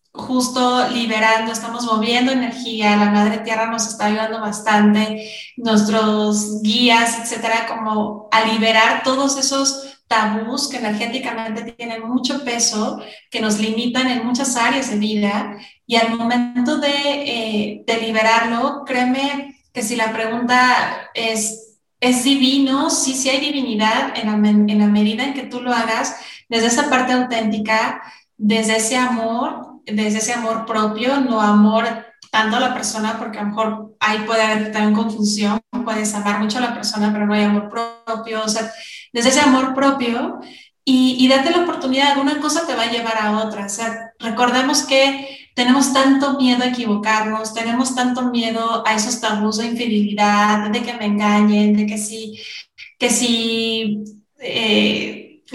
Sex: female